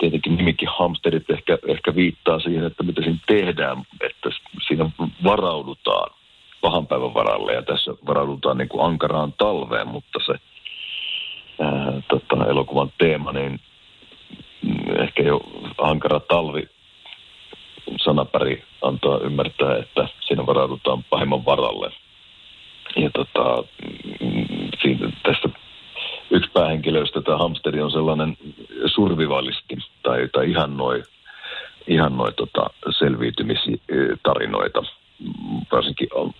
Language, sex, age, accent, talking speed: Finnish, male, 50-69, native, 105 wpm